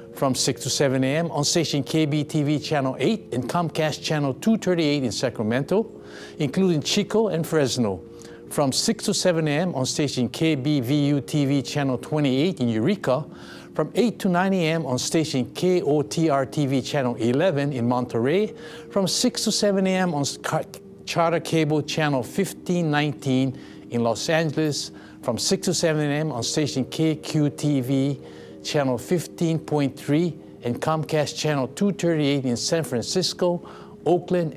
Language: English